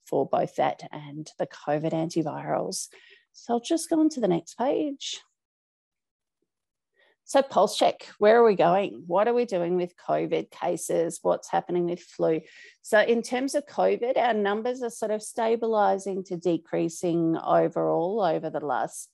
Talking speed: 160 wpm